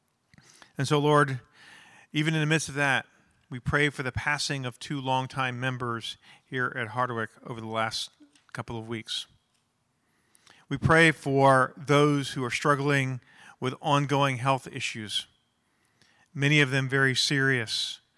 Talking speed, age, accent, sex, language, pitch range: 140 wpm, 40-59, American, male, English, 120-140 Hz